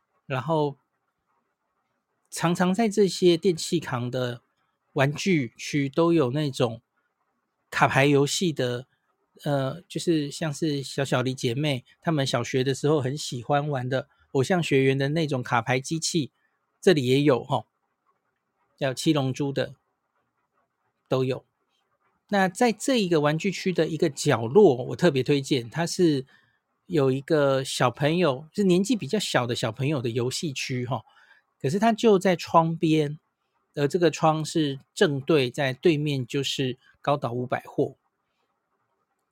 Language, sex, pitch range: Chinese, male, 130-165 Hz